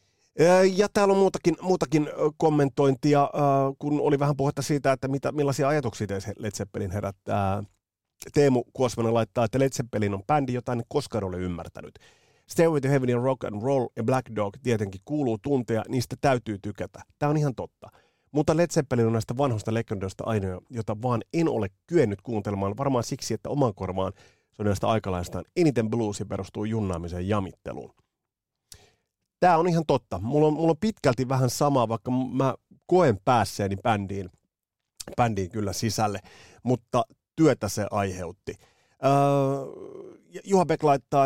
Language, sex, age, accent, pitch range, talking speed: Finnish, male, 30-49, native, 105-140 Hz, 150 wpm